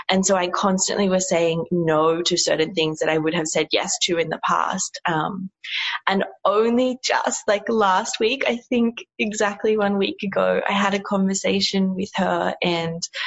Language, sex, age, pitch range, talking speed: English, female, 20-39, 170-205 Hz, 180 wpm